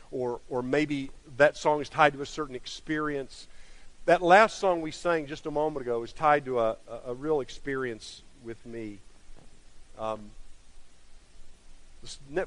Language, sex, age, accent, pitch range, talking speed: English, male, 50-69, American, 115-165 Hz, 155 wpm